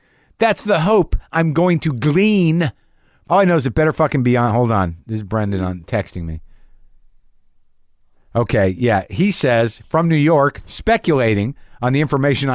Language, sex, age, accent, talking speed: English, male, 50-69, American, 165 wpm